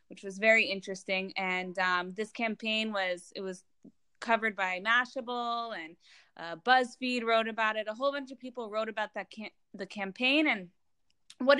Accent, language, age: American, English, 20-39